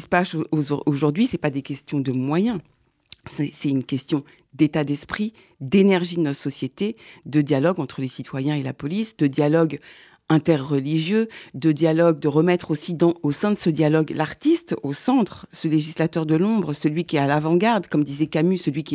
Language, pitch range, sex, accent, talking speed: French, 150-190 Hz, female, French, 175 wpm